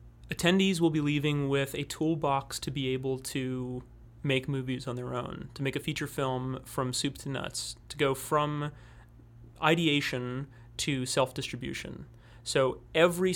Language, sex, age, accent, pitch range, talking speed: English, male, 30-49, American, 125-150 Hz, 150 wpm